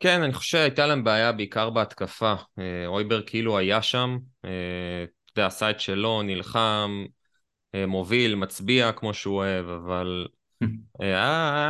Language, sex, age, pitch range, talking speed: Hebrew, male, 20-39, 95-120 Hz, 120 wpm